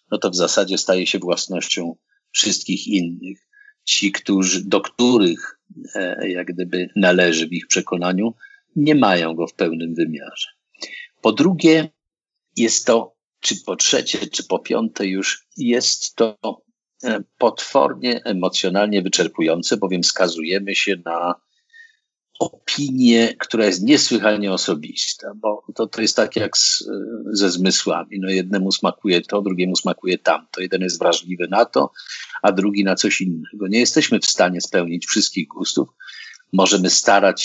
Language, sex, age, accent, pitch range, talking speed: Polish, male, 50-69, native, 90-115 Hz, 140 wpm